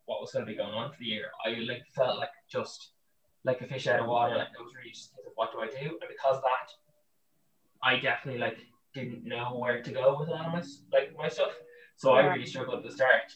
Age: 10-29